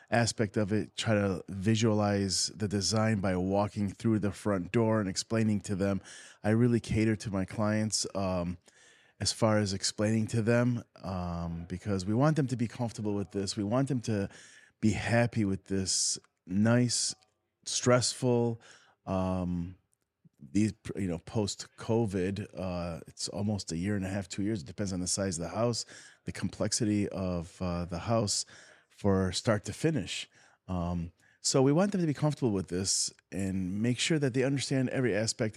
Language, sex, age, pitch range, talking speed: English, male, 30-49, 100-120 Hz, 170 wpm